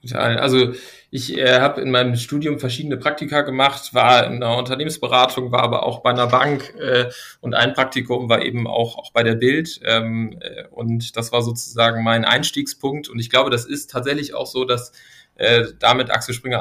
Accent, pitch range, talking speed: German, 115-130 Hz, 190 wpm